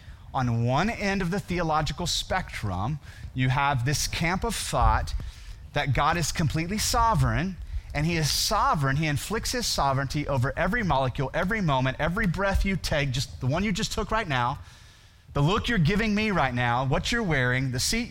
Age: 30-49